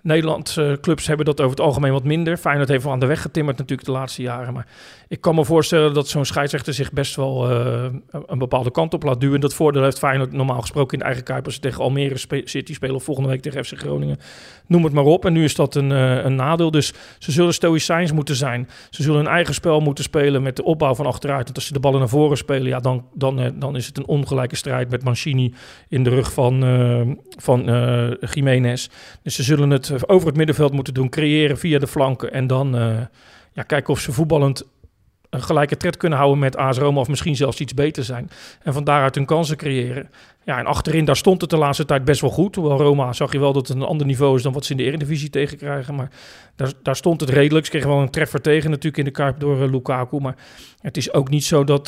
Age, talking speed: 40-59, 245 wpm